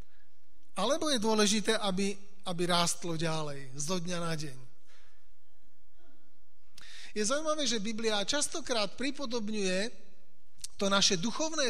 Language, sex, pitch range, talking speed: Slovak, male, 180-230 Hz, 105 wpm